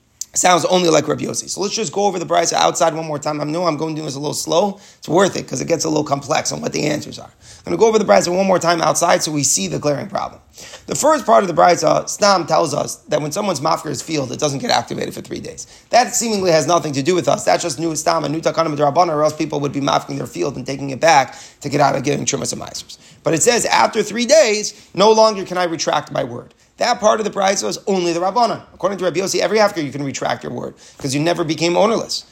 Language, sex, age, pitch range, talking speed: English, male, 30-49, 150-185 Hz, 275 wpm